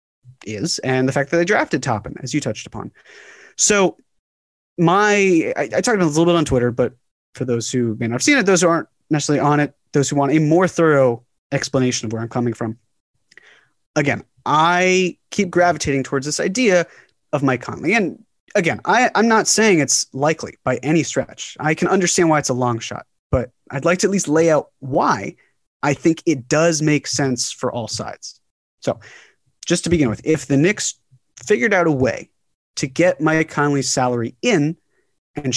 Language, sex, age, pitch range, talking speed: English, male, 30-49, 130-170 Hz, 195 wpm